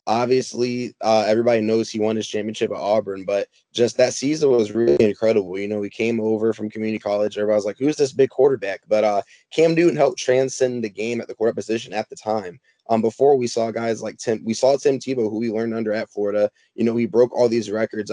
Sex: male